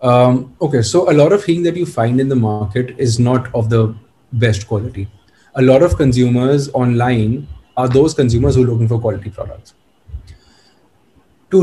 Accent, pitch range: Indian, 115-140 Hz